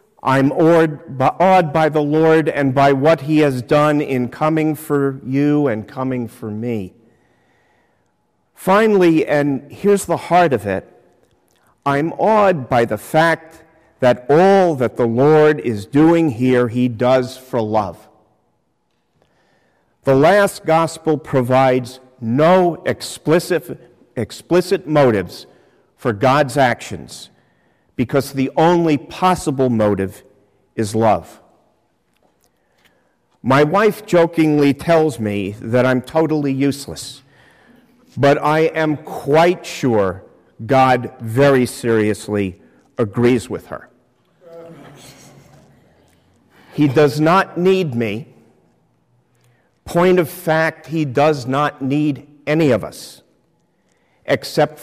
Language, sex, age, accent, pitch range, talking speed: English, male, 50-69, American, 125-160 Hz, 105 wpm